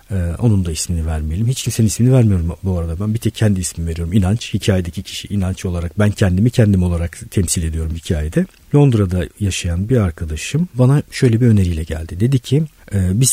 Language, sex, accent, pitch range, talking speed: Turkish, male, native, 90-120 Hz, 180 wpm